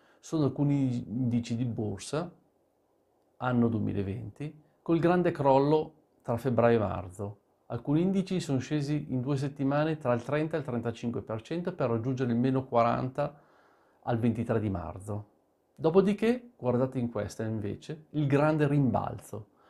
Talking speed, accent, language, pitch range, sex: 135 wpm, native, Italian, 115-150 Hz, male